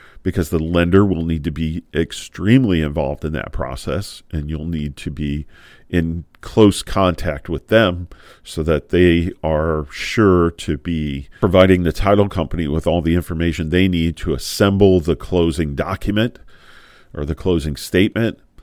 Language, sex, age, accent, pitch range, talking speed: English, male, 40-59, American, 80-95 Hz, 155 wpm